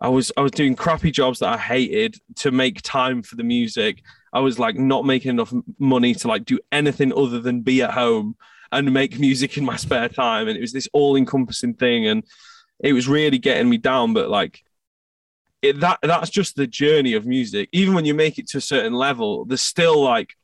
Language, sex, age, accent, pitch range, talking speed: English, male, 20-39, British, 135-220 Hz, 220 wpm